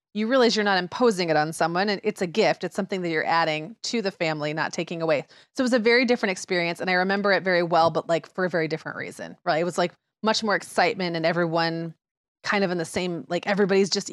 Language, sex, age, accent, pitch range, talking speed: English, female, 30-49, American, 165-205 Hz, 255 wpm